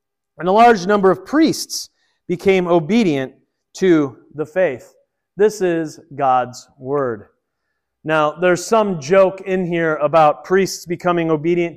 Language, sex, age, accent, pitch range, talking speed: English, male, 30-49, American, 155-215 Hz, 125 wpm